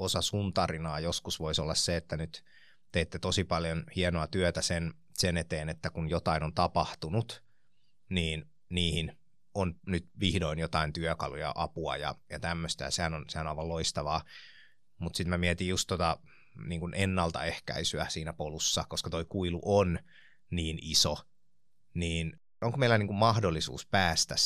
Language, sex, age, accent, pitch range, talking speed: Finnish, male, 30-49, native, 80-95 Hz, 150 wpm